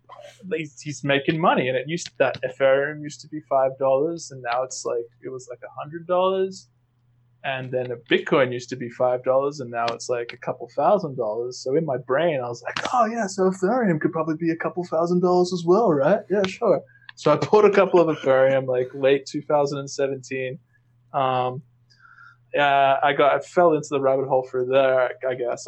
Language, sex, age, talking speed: English, male, 20-39, 200 wpm